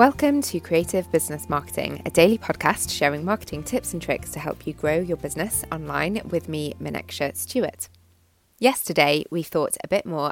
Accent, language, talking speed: British, English, 175 wpm